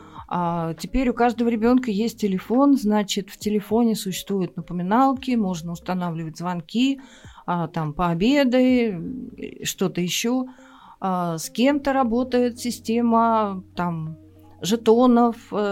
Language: Russian